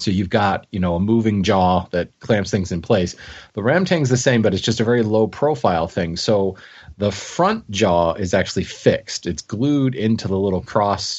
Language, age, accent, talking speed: English, 30-49, American, 210 wpm